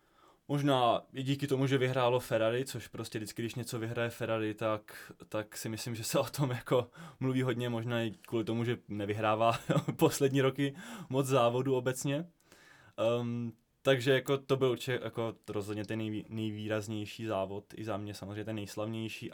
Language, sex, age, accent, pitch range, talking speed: Czech, male, 20-39, native, 110-125 Hz, 165 wpm